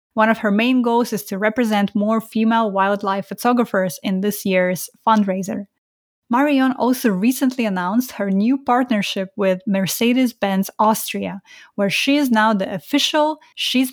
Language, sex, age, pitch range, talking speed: English, female, 20-39, 195-245 Hz, 140 wpm